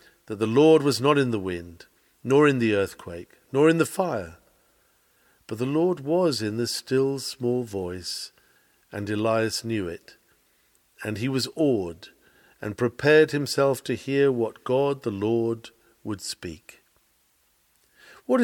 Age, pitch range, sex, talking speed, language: 50-69, 110-150 Hz, male, 145 wpm, English